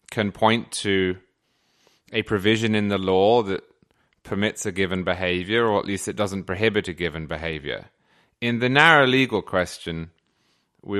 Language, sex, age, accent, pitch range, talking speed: English, male, 30-49, British, 95-130 Hz, 155 wpm